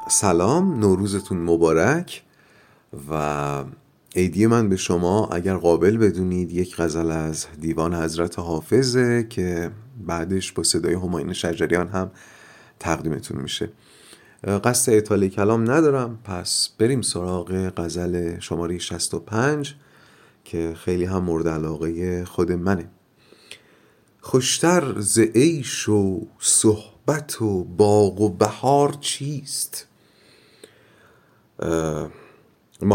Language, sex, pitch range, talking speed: Persian, male, 85-125 Hz, 100 wpm